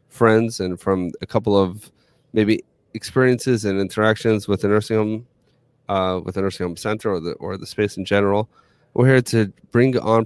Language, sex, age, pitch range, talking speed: English, male, 30-49, 95-120 Hz, 180 wpm